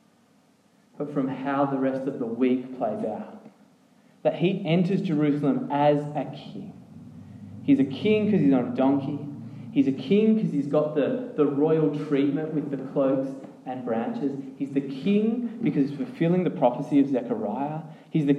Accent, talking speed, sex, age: Australian, 170 wpm, male, 20-39